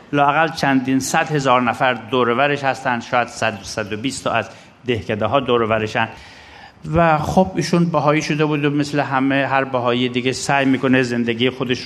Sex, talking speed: male, 160 wpm